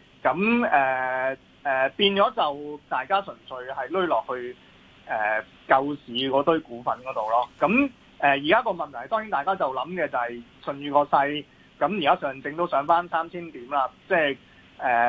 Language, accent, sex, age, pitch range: Chinese, native, male, 20-39, 130-175 Hz